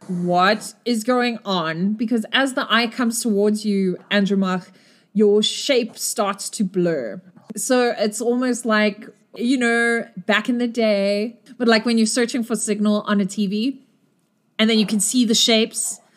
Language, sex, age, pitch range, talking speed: English, female, 30-49, 190-230 Hz, 165 wpm